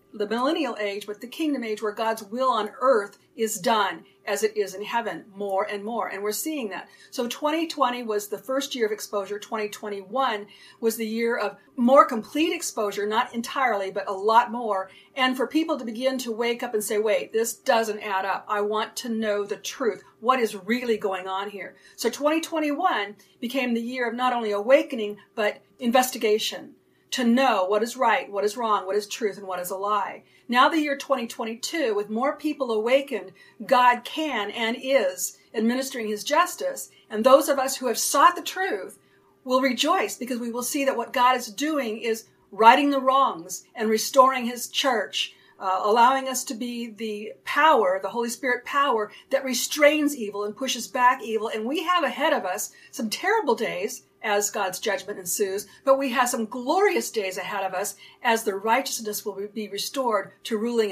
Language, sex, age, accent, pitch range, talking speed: English, female, 40-59, American, 210-265 Hz, 190 wpm